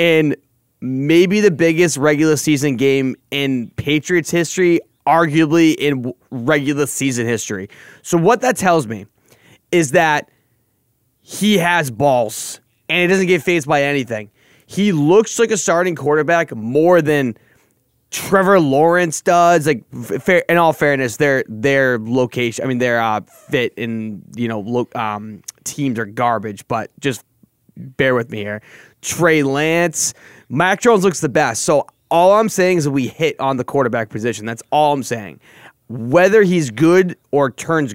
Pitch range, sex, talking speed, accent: 125-170 Hz, male, 150 wpm, American